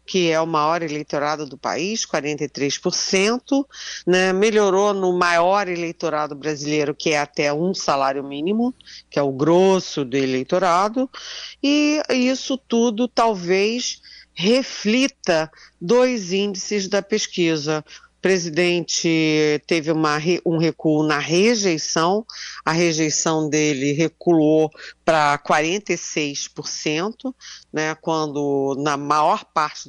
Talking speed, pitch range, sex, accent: 105 wpm, 155-220 Hz, female, Brazilian